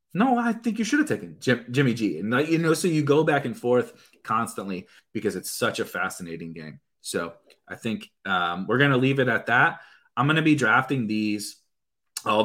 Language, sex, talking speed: English, male, 210 wpm